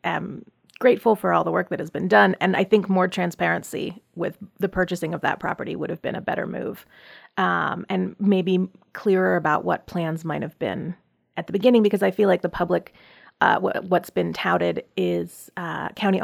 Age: 30-49